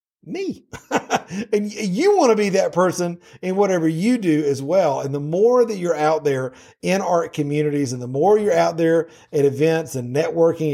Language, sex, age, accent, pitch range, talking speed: English, male, 50-69, American, 150-205 Hz, 190 wpm